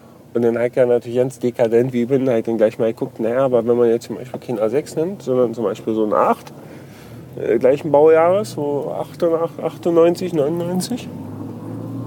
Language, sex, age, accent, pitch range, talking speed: German, male, 40-59, German, 130-170 Hz, 175 wpm